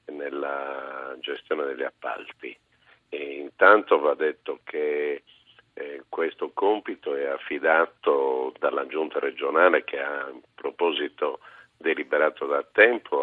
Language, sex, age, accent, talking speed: Italian, male, 50-69, native, 110 wpm